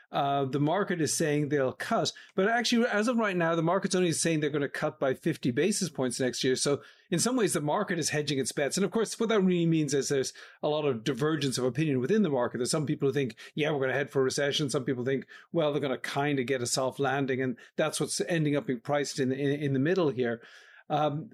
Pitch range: 130-170 Hz